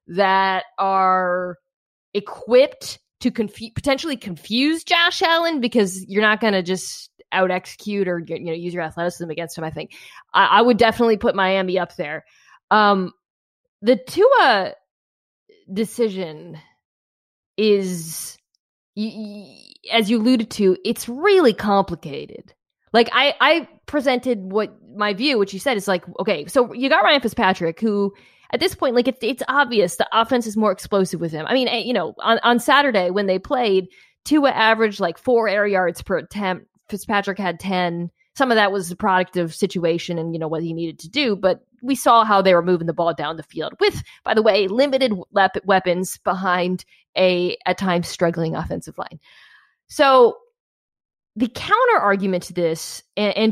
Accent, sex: American, female